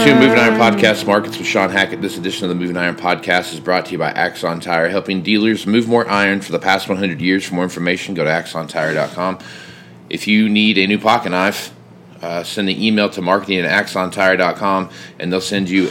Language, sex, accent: English, male, American